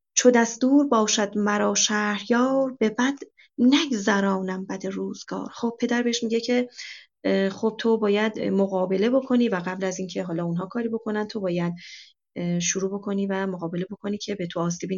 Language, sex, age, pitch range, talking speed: Persian, female, 30-49, 175-215 Hz, 155 wpm